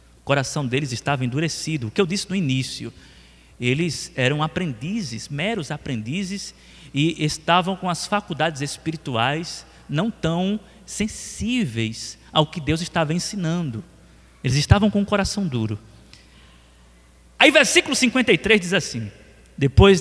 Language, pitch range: Portuguese, 125-190 Hz